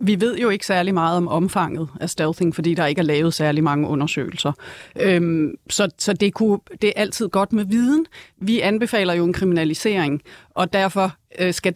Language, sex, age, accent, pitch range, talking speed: Danish, female, 30-49, native, 175-215 Hz, 170 wpm